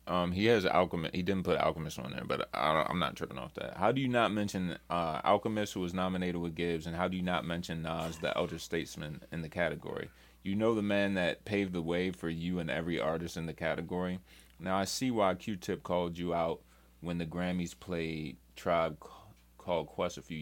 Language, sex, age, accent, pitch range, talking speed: English, male, 30-49, American, 80-95 Hz, 220 wpm